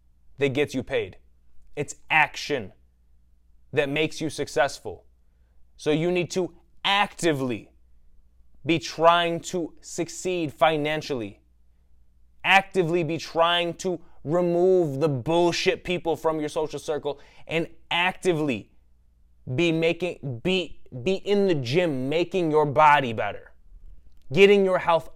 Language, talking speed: English, 115 wpm